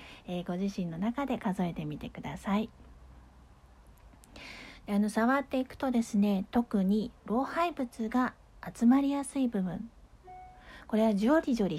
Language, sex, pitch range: Japanese, female, 195-255 Hz